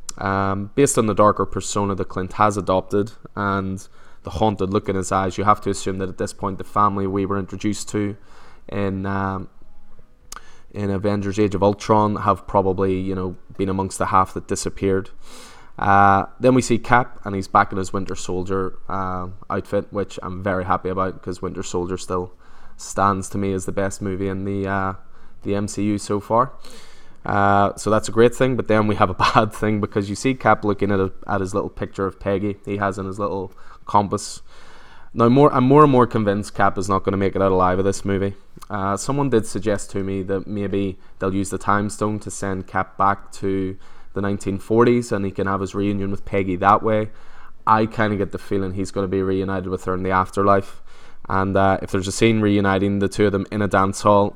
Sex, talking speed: male, 215 wpm